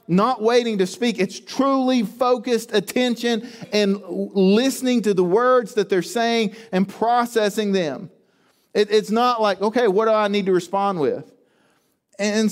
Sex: male